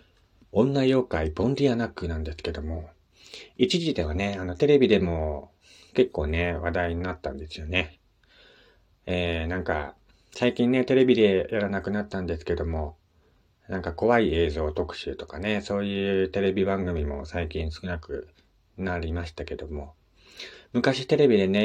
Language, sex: Japanese, male